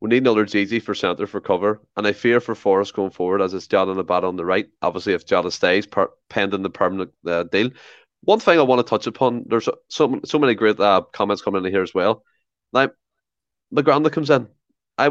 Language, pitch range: English, 100-125 Hz